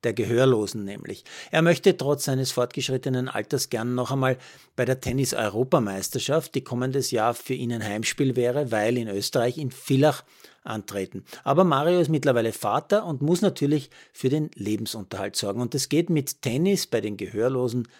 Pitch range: 120-145 Hz